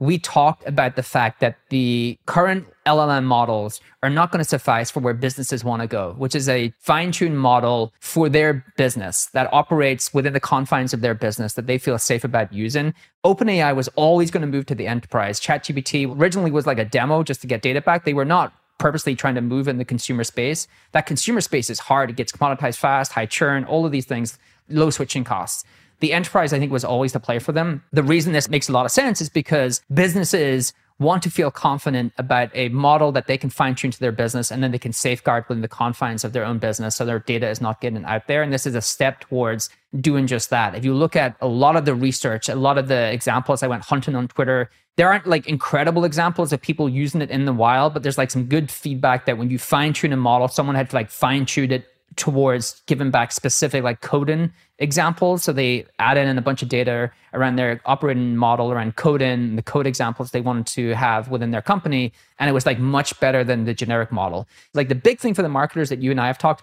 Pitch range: 125-150 Hz